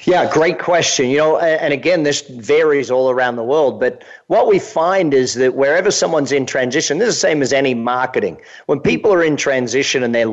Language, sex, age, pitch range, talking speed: English, male, 40-59, 120-145 Hz, 215 wpm